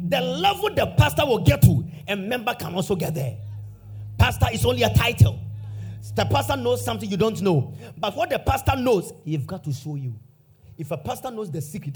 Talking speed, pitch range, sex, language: 205 wpm, 145-205 Hz, male, English